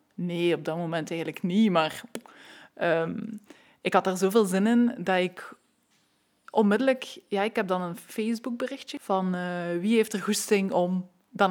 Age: 20-39